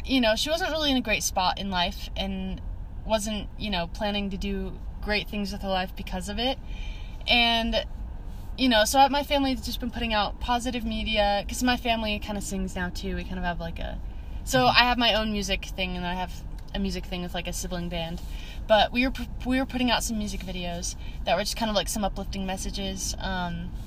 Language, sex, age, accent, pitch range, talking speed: English, female, 20-39, American, 190-245 Hz, 225 wpm